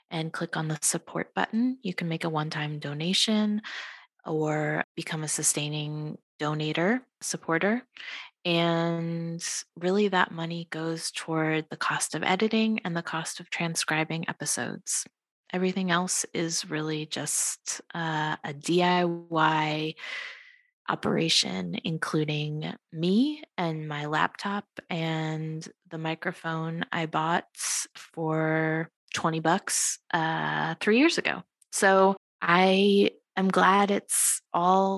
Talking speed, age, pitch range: 115 wpm, 20-39, 160-190 Hz